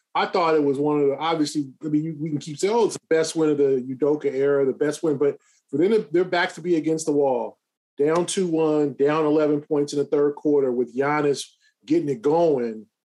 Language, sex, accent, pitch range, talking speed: English, male, American, 145-175 Hz, 235 wpm